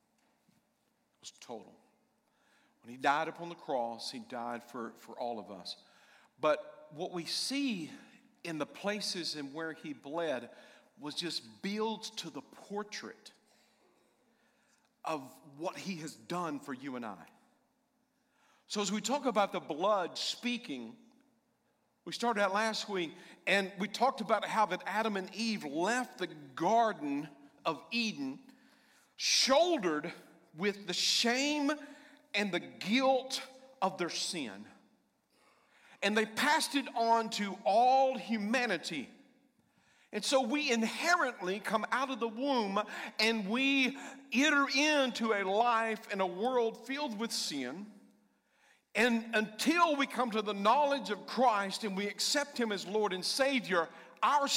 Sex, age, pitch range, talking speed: male, 50-69, 180-255 Hz, 135 wpm